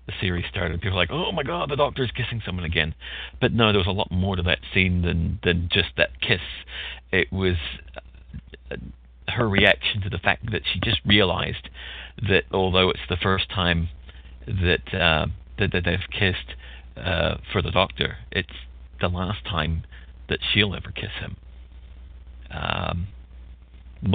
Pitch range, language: 75-100 Hz, English